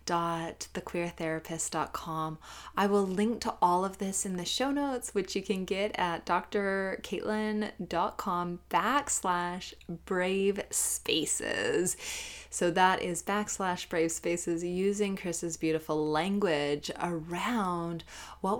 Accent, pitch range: American, 180-225 Hz